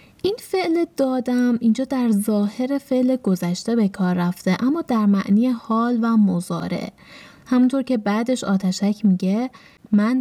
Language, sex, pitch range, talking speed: Persian, female, 195-265 Hz, 135 wpm